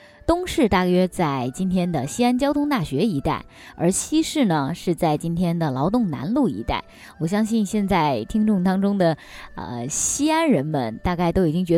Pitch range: 165-245 Hz